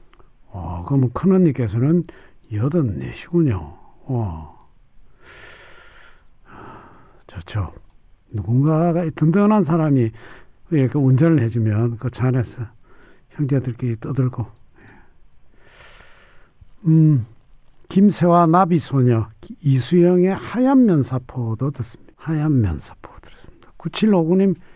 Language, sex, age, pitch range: Korean, male, 60-79, 115-180 Hz